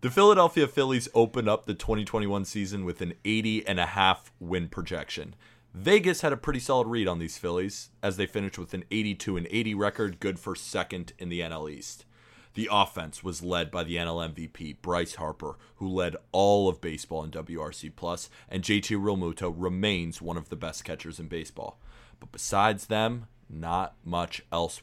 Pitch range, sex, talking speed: 85-110 Hz, male, 170 wpm